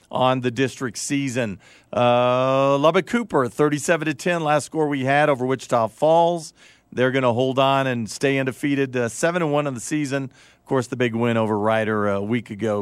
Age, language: 50-69, English